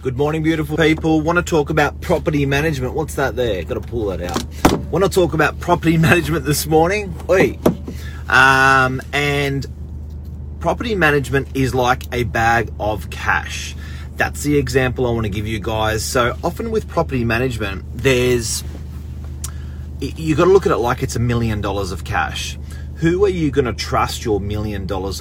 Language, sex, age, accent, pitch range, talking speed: English, male, 30-49, Australian, 75-125 Hz, 160 wpm